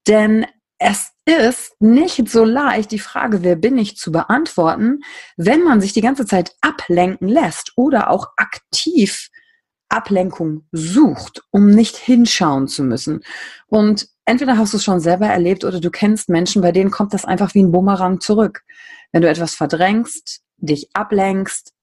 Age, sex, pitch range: 30-49, female, 175-230 Hz